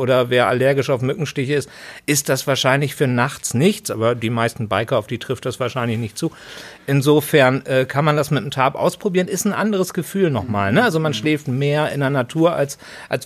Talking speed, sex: 210 wpm, male